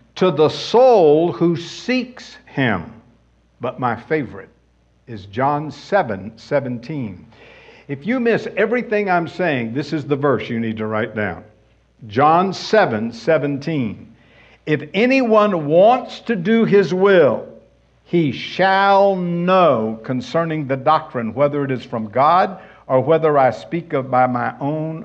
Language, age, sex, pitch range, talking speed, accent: English, 60-79, male, 125-185 Hz, 135 wpm, American